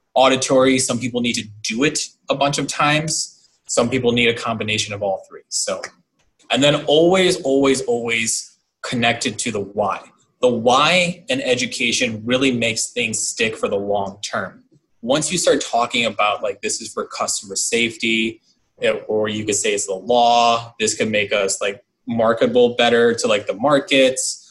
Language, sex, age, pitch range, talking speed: English, male, 20-39, 115-170 Hz, 170 wpm